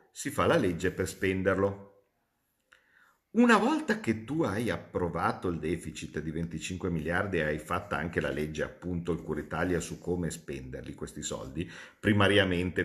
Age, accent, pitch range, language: 50-69, native, 85-125 Hz, Italian